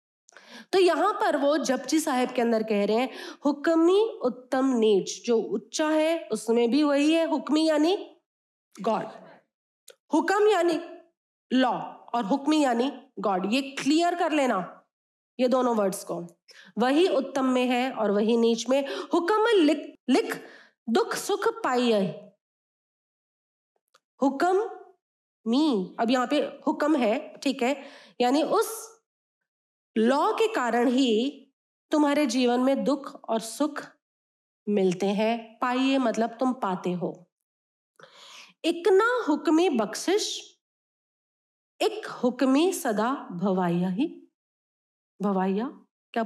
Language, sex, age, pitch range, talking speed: Hindi, female, 20-39, 225-320 Hz, 120 wpm